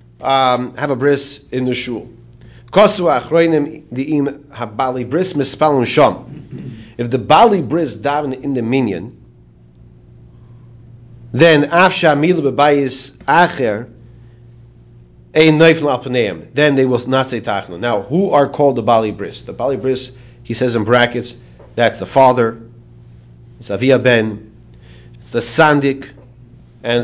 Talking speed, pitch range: 100 wpm, 115-140 Hz